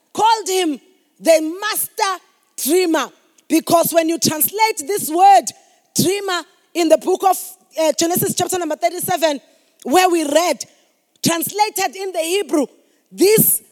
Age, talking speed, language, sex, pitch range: 30-49, 125 wpm, English, female, 325-395 Hz